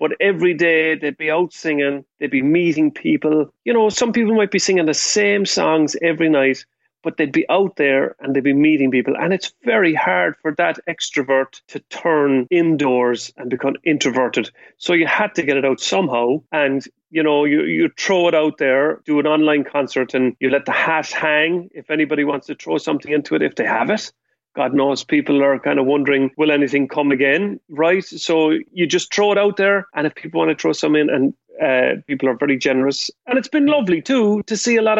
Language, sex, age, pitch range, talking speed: English, male, 40-59, 140-175 Hz, 220 wpm